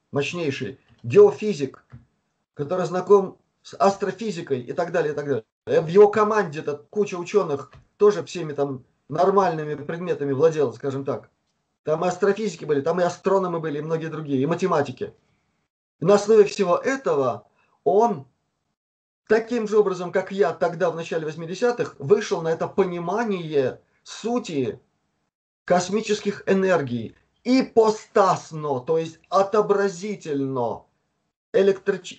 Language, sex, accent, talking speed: Russian, male, native, 120 wpm